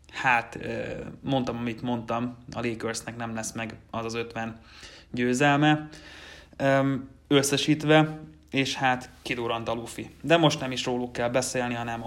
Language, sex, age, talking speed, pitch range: Hungarian, male, 30-49, 135 wpm, 115-130 Hz